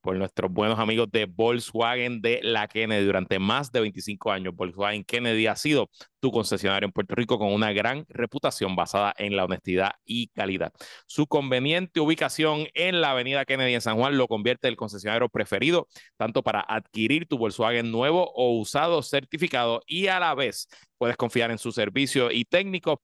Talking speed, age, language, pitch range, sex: 180 wpm, 30-49, Spanish, 110-155 Hz, male